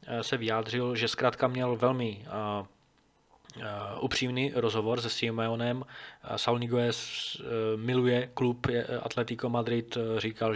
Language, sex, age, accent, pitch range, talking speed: Czech, male, 20-39, native, 110-120 Hz, 110 wpm